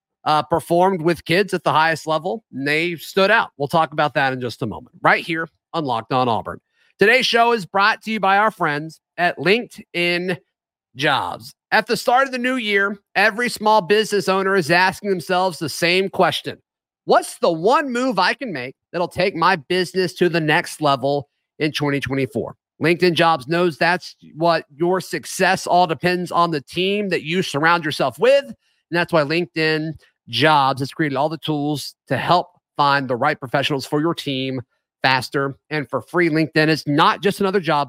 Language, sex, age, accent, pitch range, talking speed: English, male, 40-59, American, 145-185 Hz, 185 wpm